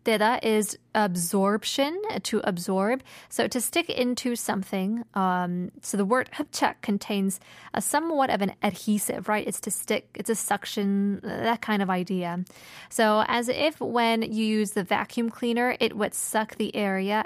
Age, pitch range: 20-39, 195-235 Hz